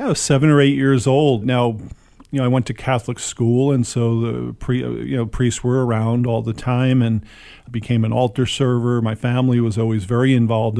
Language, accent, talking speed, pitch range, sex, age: English, American, 210 wpm, 115-130 Hz, male, 40-59